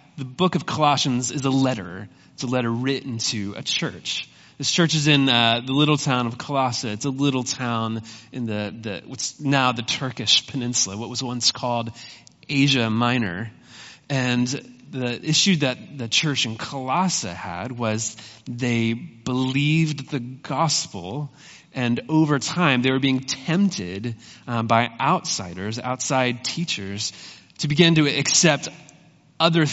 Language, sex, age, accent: English, male, 30-49, American